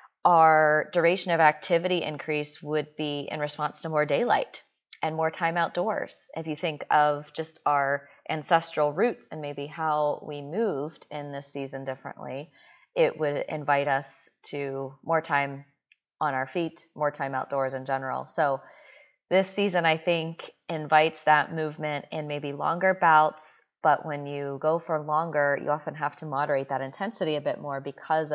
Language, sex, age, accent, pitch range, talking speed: English, female, 20-39, American, 140-165 Hz, 165 wpm